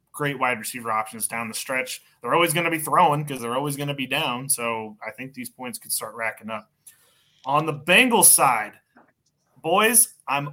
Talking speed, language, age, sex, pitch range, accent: 200 wpm, English, 20-39, male, 125-170 Hz, American